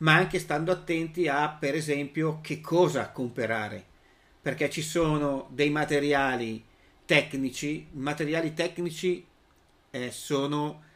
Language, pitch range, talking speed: Italian, 130-155 Hz, 110 wpm